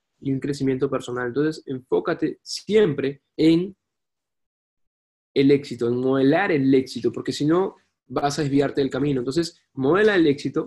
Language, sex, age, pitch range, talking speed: Spanish, male, 20-39, 130-150 Hz, 145 wpm